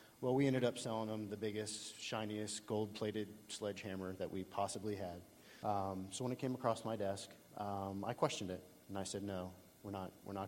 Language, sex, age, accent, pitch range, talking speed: English, male, 30-49, American, 95-110 Hz, 200 wpm